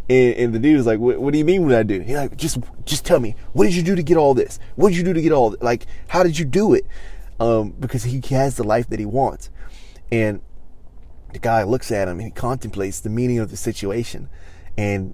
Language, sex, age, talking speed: English, male, 20-39, 255 wpm